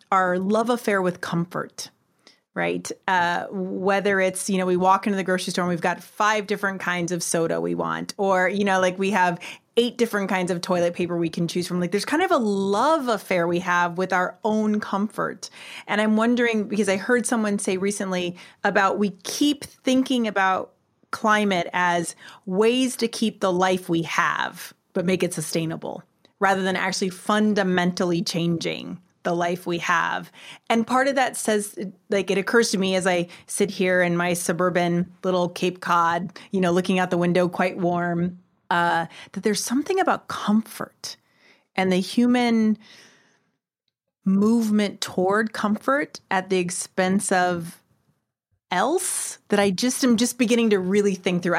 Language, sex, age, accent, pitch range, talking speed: English, female, 30-49, American, 180-215 Hz, 170 wpm